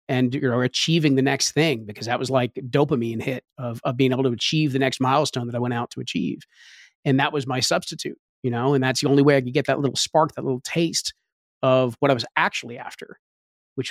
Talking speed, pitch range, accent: 240 wpm, 125-145 Hz, American